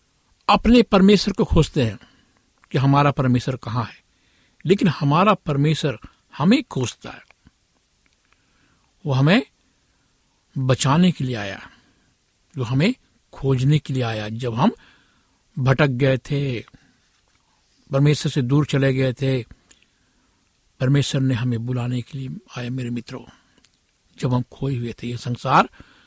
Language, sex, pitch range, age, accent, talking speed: Hindi, male, 125-145 Hz, 60-79, native, 125 wpm